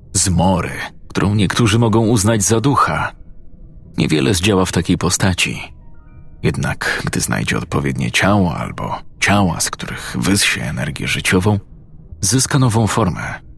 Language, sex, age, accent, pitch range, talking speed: Polish, male, 40-59, native, 85-115 Hz, 120 wpm